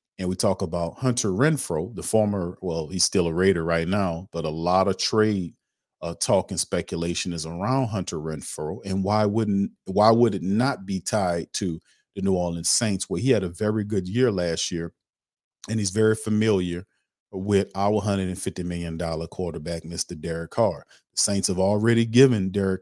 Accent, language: American, English